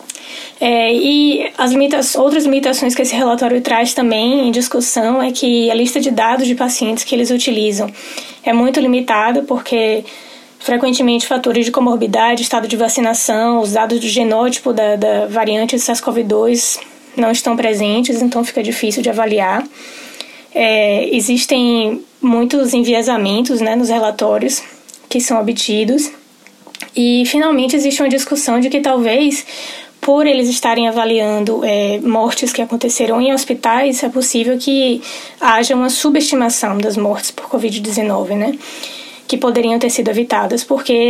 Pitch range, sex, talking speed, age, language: 230-265 Hz, female, 135 wpm, 20-39, English